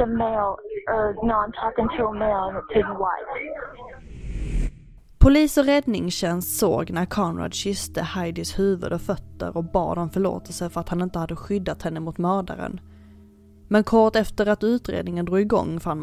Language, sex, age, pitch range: Swedish, female, 20-39, 165-205 Hz